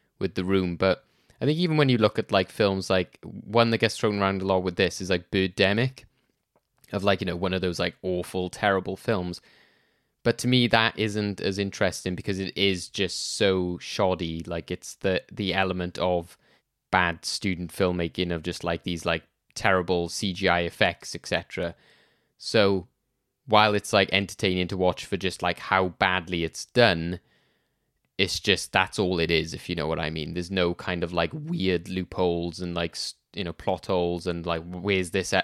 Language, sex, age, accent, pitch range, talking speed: English, male, 20-39, British, 90-115 Hz, 190 wpm